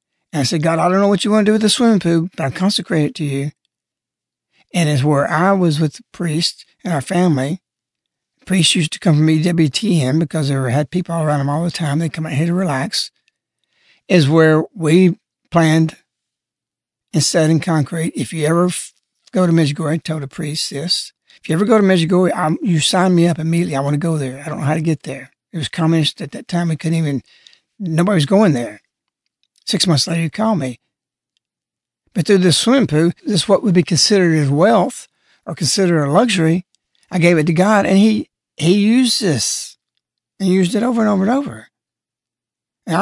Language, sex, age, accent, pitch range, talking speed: English, male, 60-79, American, 155-190 Hz, 210 wpm